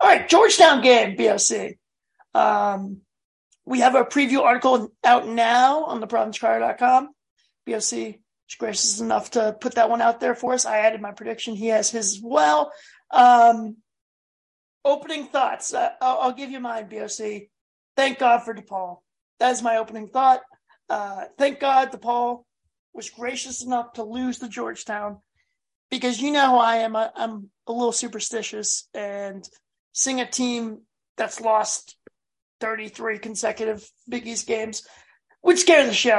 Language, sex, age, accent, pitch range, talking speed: English, male, 40-59, American, 215-255 Hz, 155 wpm